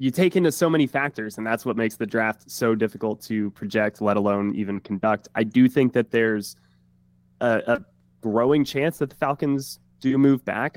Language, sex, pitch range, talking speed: English, male, 105-130 Hz, 195 wpm